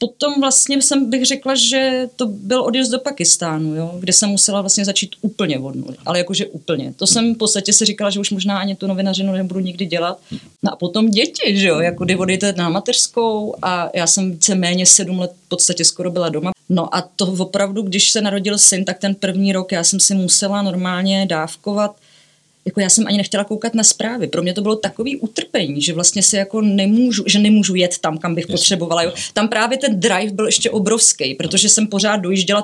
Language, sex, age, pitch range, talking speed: Czech, female, 30-49, 175-210 Hz, 210 wpm